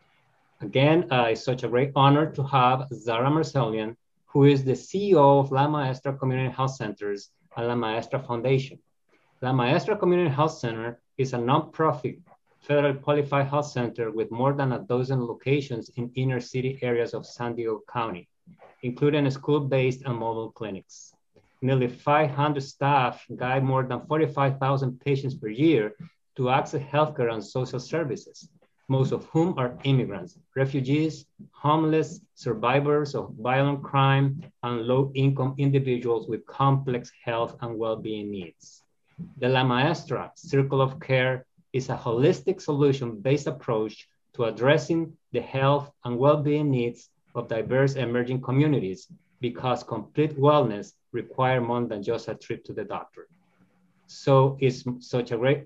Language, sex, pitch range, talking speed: English, male, 120-145 Hz, 140 wpm